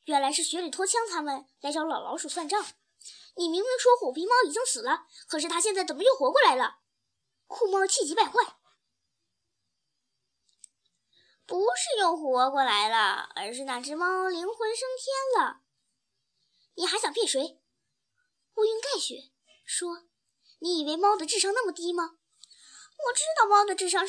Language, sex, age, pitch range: Chinese, male, 10-29, 310-450 Hz